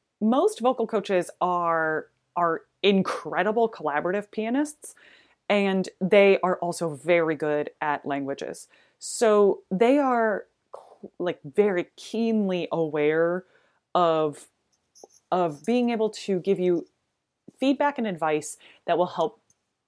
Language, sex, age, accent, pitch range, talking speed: English, female, 30-49, American, 170-225 Hz, 110 wpm